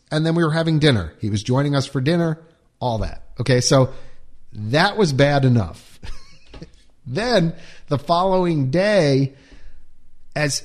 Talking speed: 140 wpm